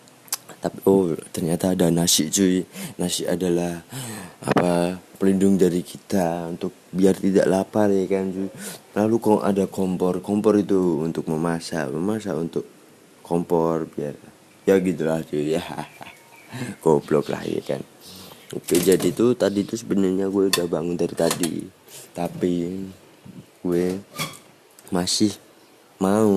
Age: 20-39